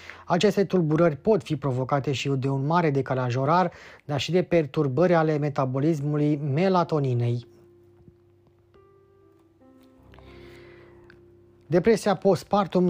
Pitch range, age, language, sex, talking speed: 140-175 Hz, 20-39, Romanian, male, 95 wpm